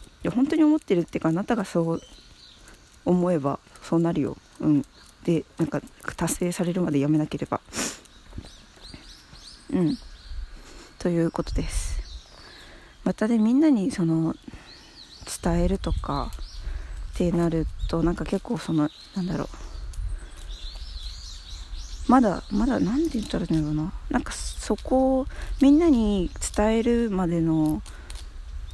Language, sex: Japanese, female